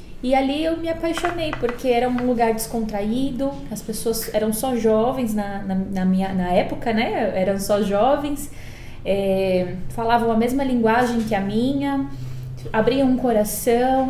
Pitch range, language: 210-250 Hz, Portuguese